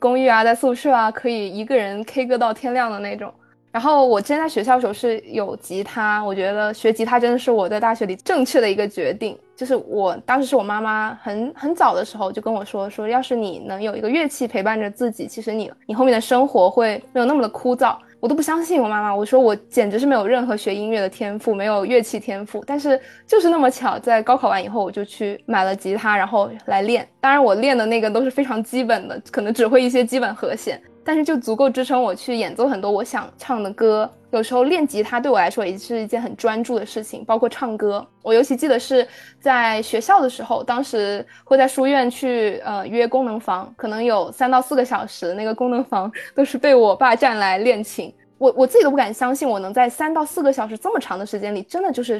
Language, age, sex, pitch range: Chinese, 20-39, female, 215-260 Hz